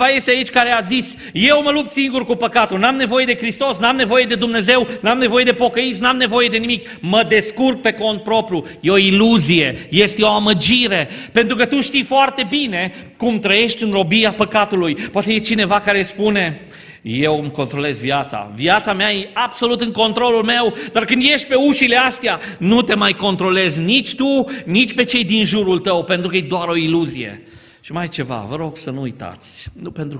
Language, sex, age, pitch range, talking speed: Romanian, male, 40-59, 145-235 Hz, 200 wpm